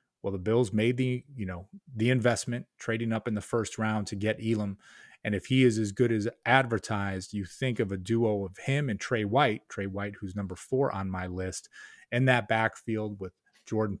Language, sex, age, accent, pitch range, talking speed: English, male, 30-49, American, 100-115 Hz, 210 wpm